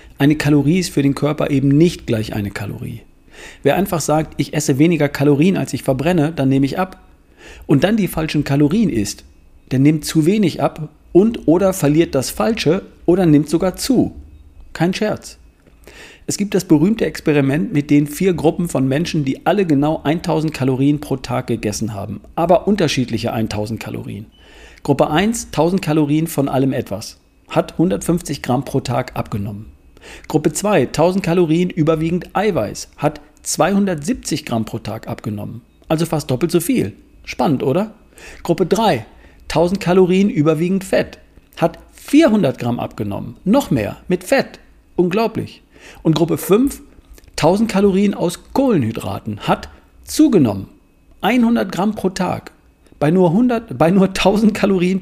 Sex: male